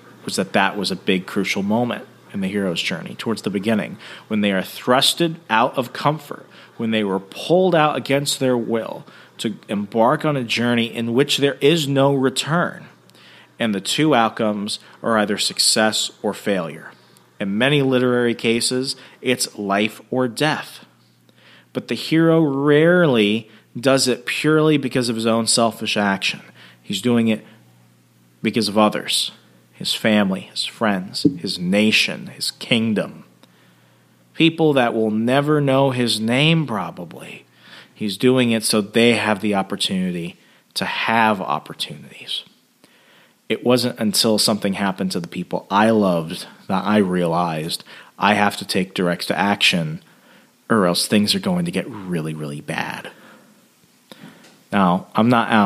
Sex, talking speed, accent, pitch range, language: male, 150 wpm, American, 95-130 Hz, English